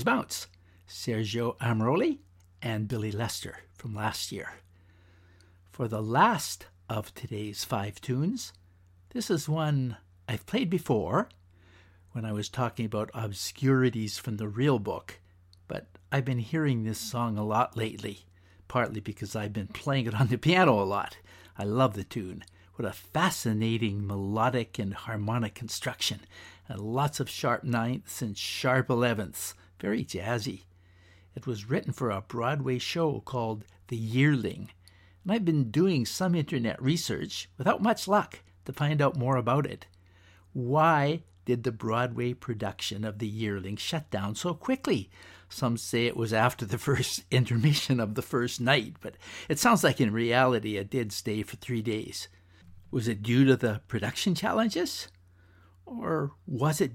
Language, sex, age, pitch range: English, male, 60-79, 95-130 Hz